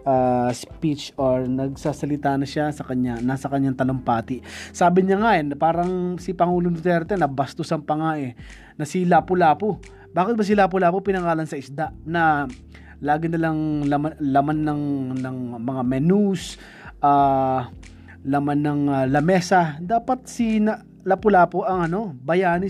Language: Filipino